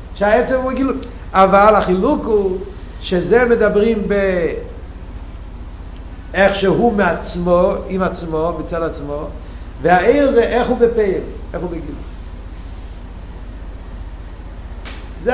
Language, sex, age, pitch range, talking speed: Hebrew, male, 50-69, 145-220 Hz, 95 wpm